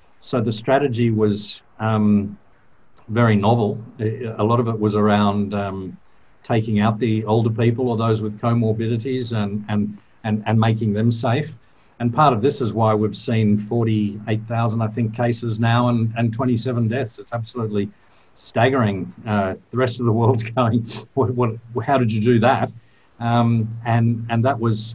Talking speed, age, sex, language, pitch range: 175 wpm, 50-69, male, English, 105-120 Hz